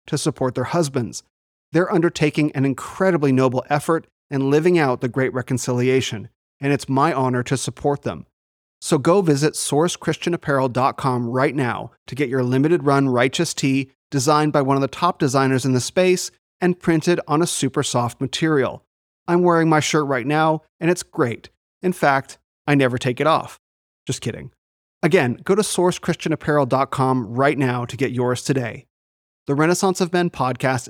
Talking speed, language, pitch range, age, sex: 165 wpm, English, 130-160 Hz, 30-49, male